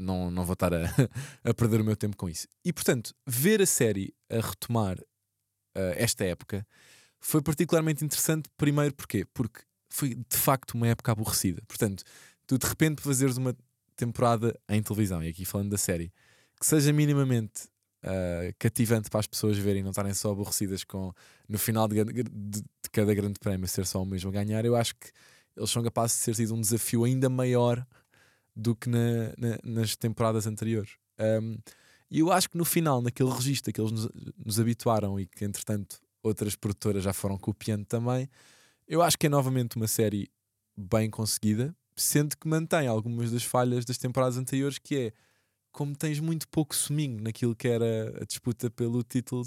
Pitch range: 105-130 Hz